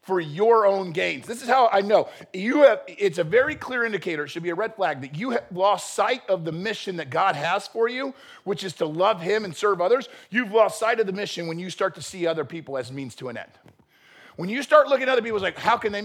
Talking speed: 275 wpm